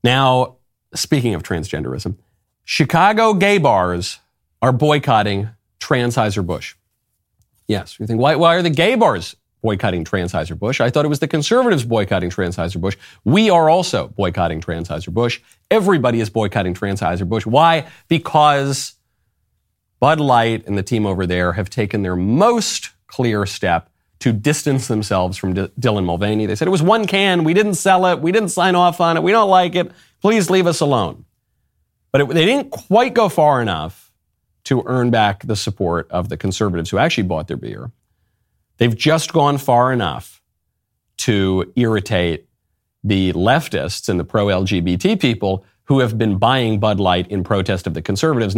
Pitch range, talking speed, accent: 95-150 Hz, 165 wpm, American